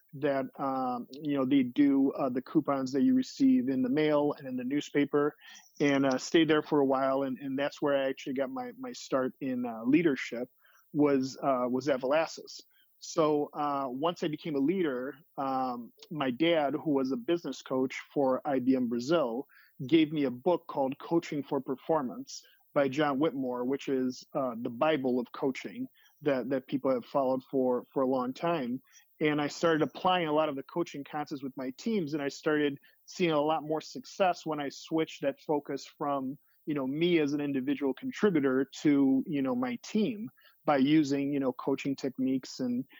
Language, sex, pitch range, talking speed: English, male, 135-170 Hz, 190 wpm